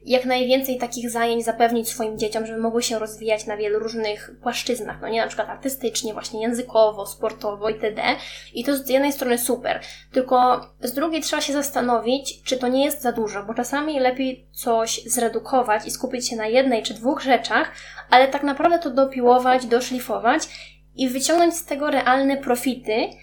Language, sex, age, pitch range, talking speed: Polish, female, 20-39, 230-275 Hz, 175 wpm